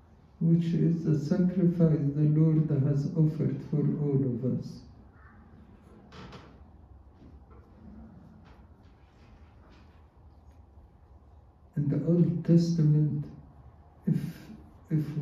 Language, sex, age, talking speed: English, male, 60-79, 70 wpm